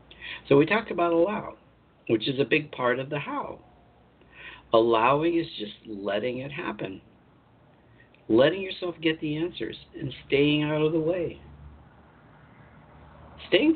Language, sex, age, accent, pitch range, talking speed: English, male, 60-79, American, 125-175 Hz, 135 wpm